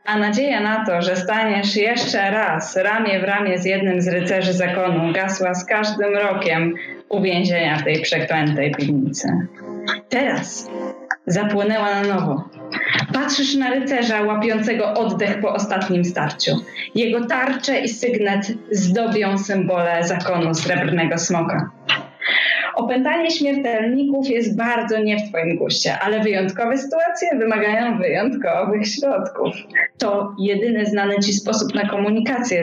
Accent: native